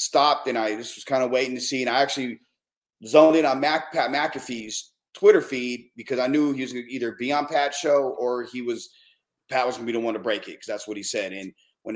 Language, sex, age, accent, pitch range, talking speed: English, male, 30-49, American, 110-135 Hz, 255 wpm